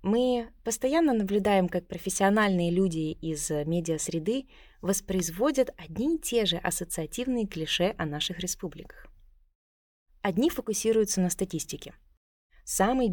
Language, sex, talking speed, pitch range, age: Russian, female, 110 wpm, 170-220 Hz, 20-39